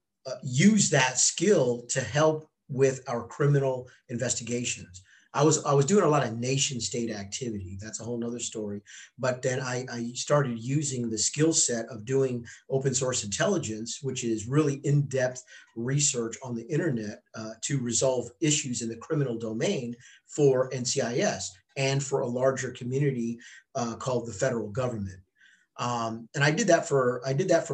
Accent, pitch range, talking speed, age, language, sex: American, 115-135 Hz, 170 wpm, 40-59, English, male